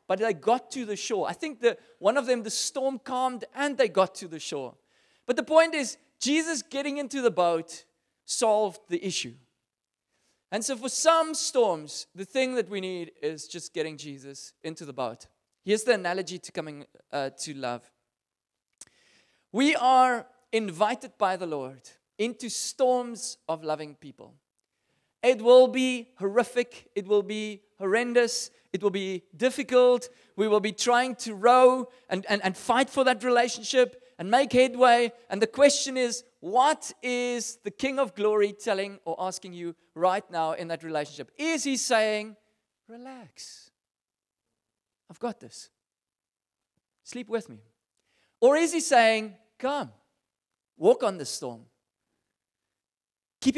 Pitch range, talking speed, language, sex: 180-255 Hz, 150 wpm, English, male